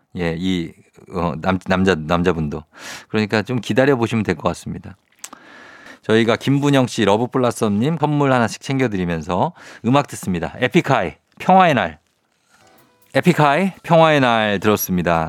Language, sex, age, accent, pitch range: Korean, male, 50-69, native, 100-140 Hz